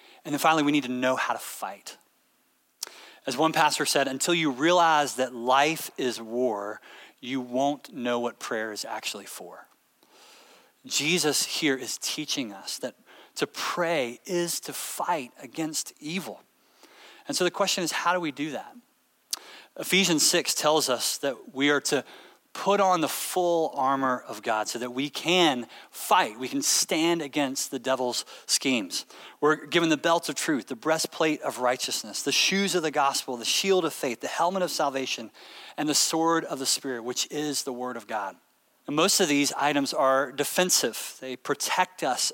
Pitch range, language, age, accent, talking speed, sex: 130-170 Hz, English, 30-49, American, 175 wpm, male